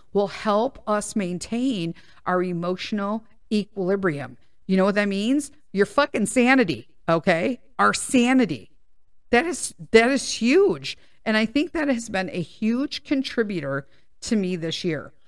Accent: American